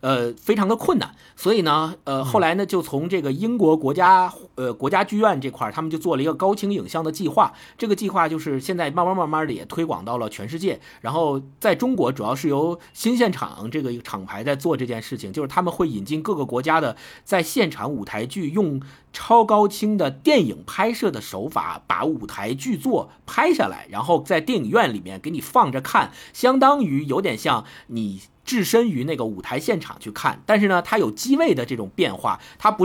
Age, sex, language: 50-69, male, Chinese